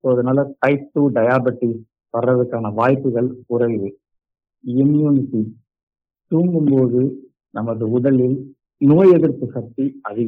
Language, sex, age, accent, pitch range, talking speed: English, male, 50-69, Indian, 115-145 Hz, 60 wpm